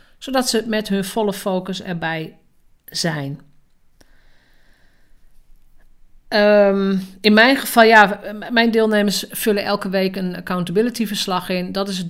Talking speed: 120 wpm